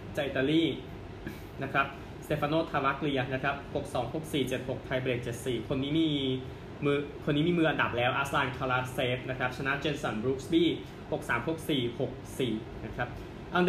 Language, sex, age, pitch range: Thai, male, 20-39, 125-145 Hz